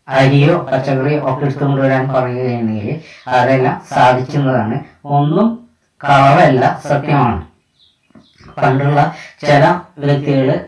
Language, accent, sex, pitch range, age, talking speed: Malayalam, native, female, 130-150 Hz, 20-39, 80 wpm